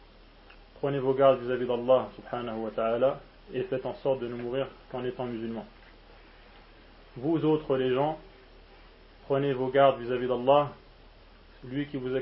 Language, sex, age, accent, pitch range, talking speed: French, male, 30-49, French, 120-140 Hz, 150 wpm